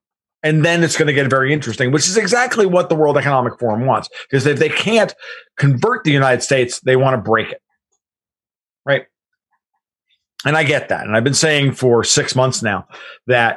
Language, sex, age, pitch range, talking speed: English, male, 50-69, 125-160 Hz, 195 wpm